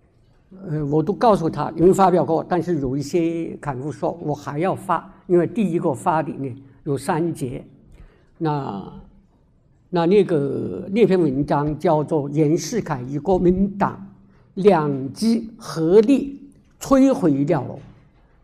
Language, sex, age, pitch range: Chinese, male, 60-79, 150-195 Hz